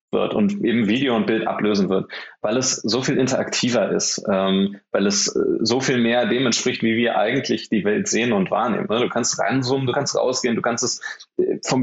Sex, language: male, German